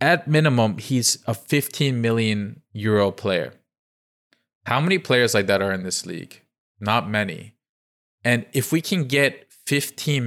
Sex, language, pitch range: male, English, 100-125 Hz